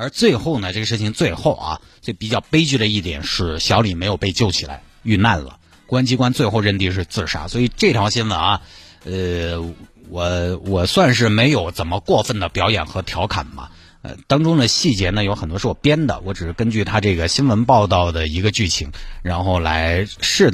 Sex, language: male, Chinese